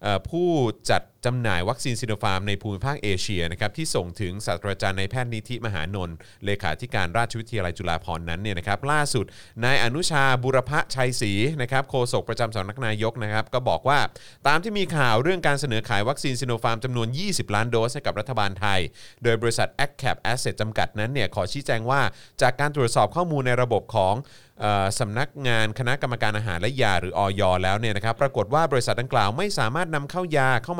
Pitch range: 105-135 Hz